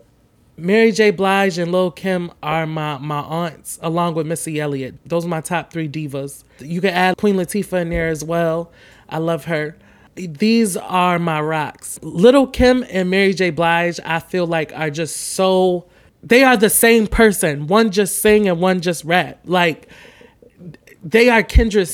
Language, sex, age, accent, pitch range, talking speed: English, male, 20-39, American, 165-205 Hz, 175 wpm